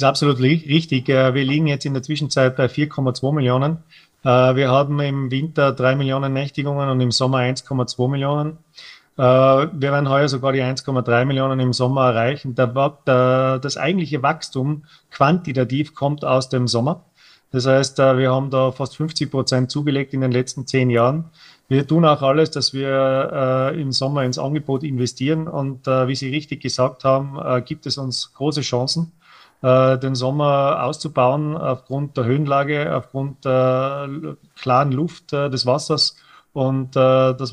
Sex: male